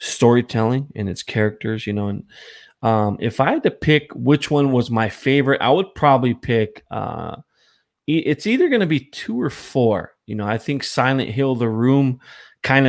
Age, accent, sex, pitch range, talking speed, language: 20-39, American, male, 115-135 Hz, 185 wpm, English